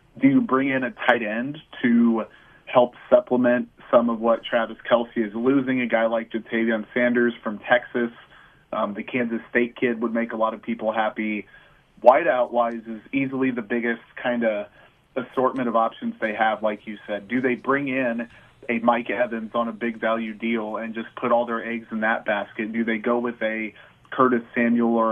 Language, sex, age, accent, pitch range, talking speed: English, male, 30-49, American, 115-125 Hz, 195 wpm